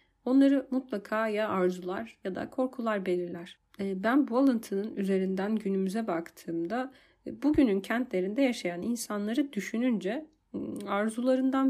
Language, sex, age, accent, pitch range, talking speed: Turkish, female, 30-49, native, 180-225 Hz, 105 wpm